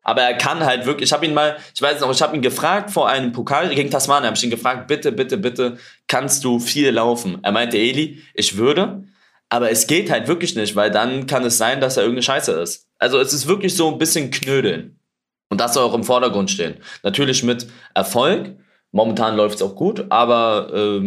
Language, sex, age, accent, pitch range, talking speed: German, male, 20-39, German, 100-125 Hz, 220 wpm